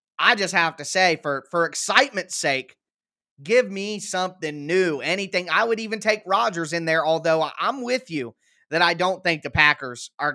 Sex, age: male, 20-39